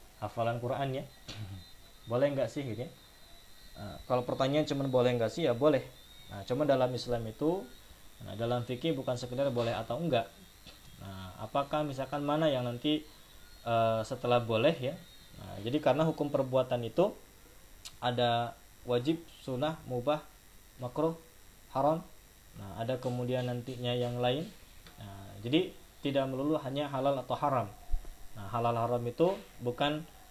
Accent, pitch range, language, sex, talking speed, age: native, 110-140 Hz, Indonesian, male, 140 wpm, 20-39